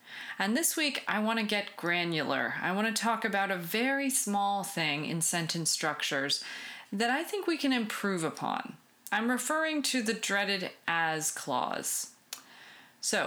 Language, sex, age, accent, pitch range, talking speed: English, female, 30-49, American, 165-225 Hz, 160 wpm